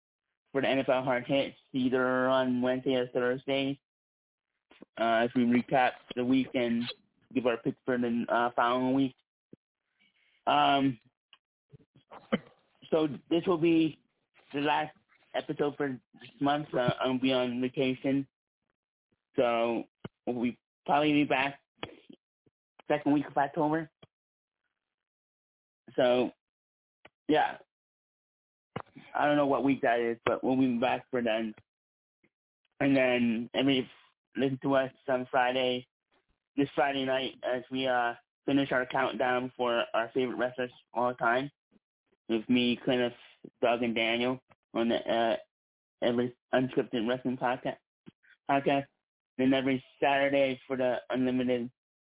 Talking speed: 125 wpm